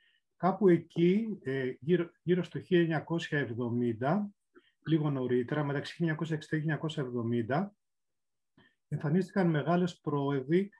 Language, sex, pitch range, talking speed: Greek, male, 135-185 Hz, 70 wpm